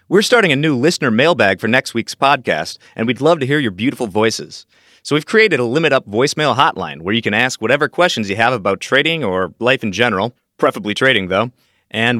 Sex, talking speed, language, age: male, 215 wpm, English, 30-49